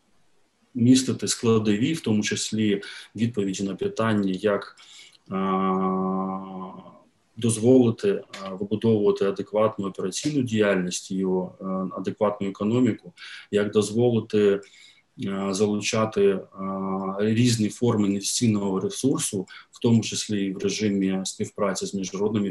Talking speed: 90 wpm